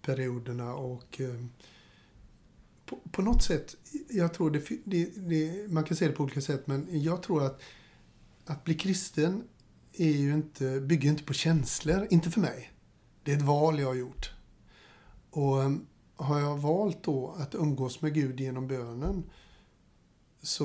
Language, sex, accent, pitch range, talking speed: Swedish, male, native, 135-165 Hz, 160 wpm